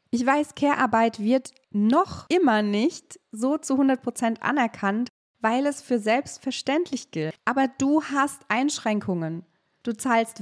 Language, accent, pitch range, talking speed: German, German, 215-270 Hz, 125 wpm